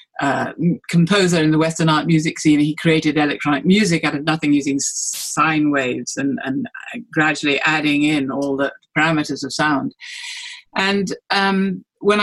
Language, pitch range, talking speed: English, 155-200 Hz, 150 wpm